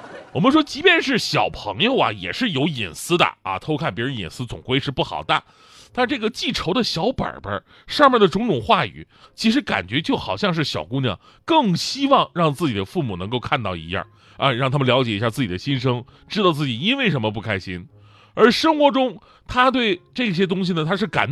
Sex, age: male, 30-49